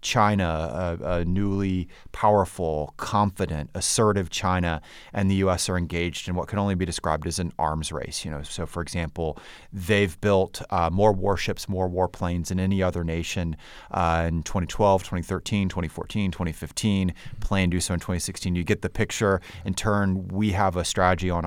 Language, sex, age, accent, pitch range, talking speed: English, male, 30-49, American, 85-100 Hz, 175 wpm